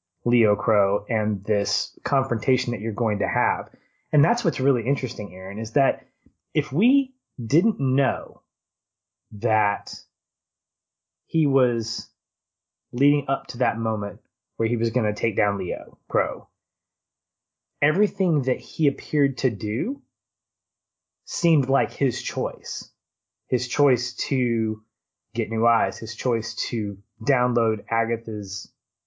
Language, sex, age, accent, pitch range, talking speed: English, male, 20-39, American, 105-135 Hz, 125 wpm